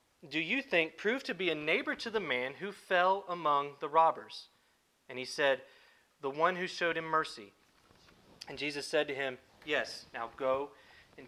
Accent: American